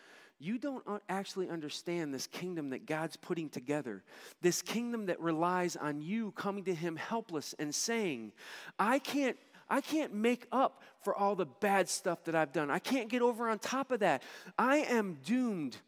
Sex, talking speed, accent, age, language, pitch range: male, 180 wpm, American, 40-59, English, 140-215 Hz